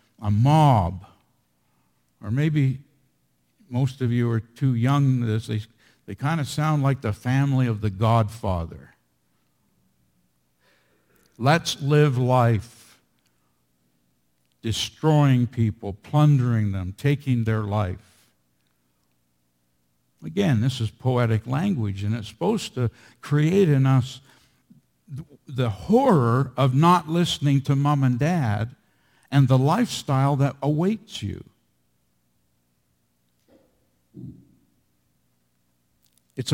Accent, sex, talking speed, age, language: American, male, 95 wpm, 60-79, English